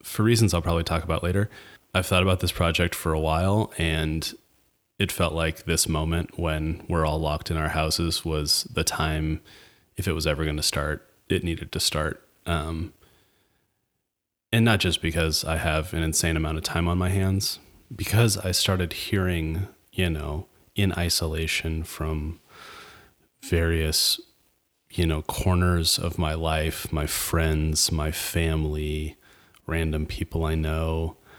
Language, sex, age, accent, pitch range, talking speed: English, male, 30-49, American, 80-90 Hz, 155 wpm